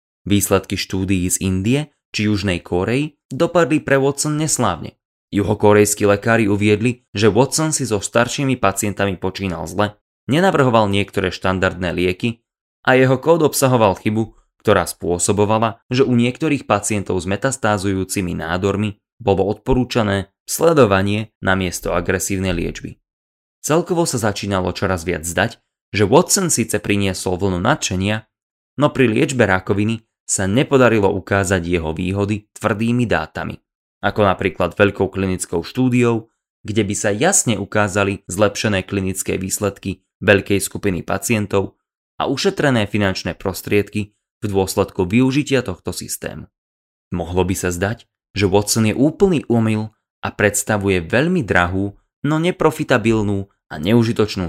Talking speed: 125 wpm